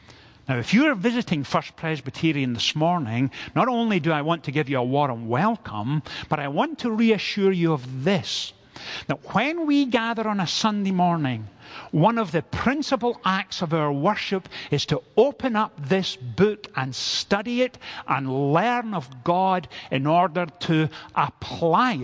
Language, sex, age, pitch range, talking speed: English, male, 50-69, 135-205 Hz, 165 wpm